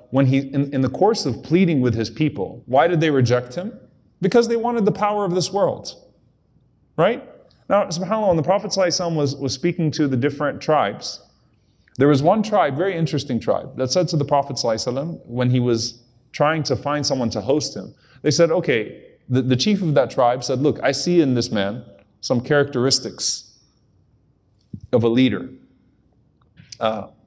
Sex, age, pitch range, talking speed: male, 30-49, 120-150 Hz, 180 wpm